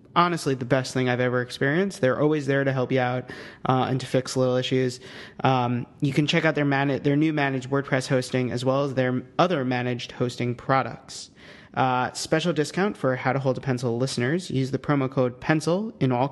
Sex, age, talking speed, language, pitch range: male, 30-49, 210 wpm, English, 125-145 Hz